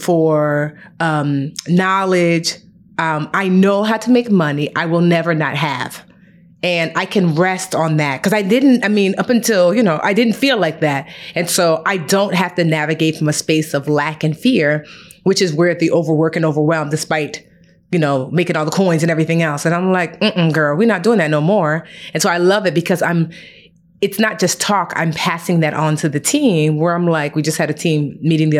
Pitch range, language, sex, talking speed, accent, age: 155-190 Hz, English, female, 220 wpm, American, 30-49